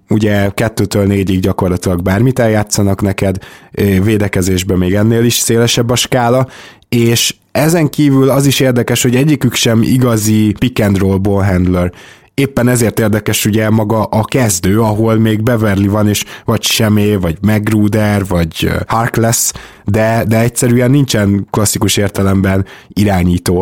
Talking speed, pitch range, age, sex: 130 wpm, 100-120 Hz, 20-39, male